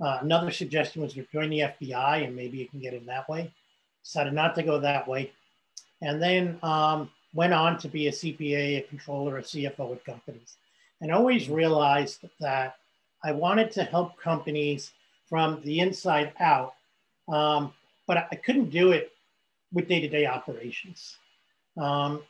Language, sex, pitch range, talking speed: English, male, 140-170 Hz, 160 wpm